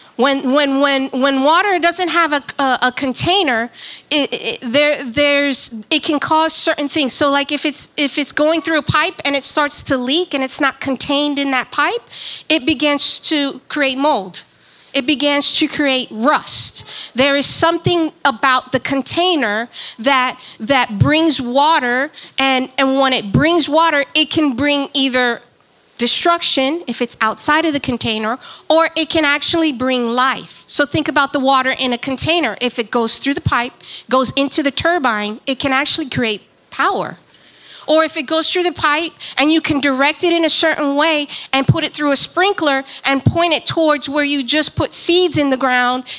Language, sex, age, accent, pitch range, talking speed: English, female, 40-59, American, 265-315 Hz, 185 wpm